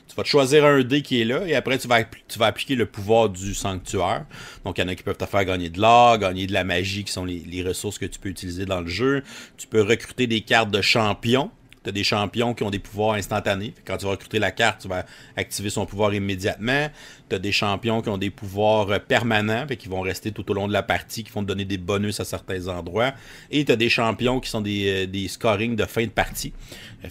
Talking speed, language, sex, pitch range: 260 wpm, French, male, 100-120 Hz